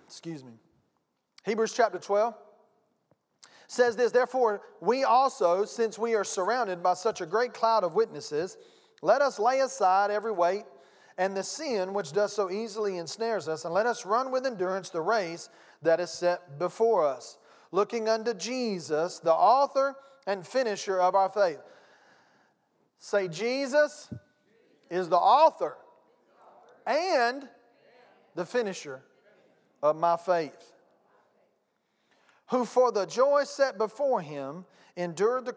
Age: 40-59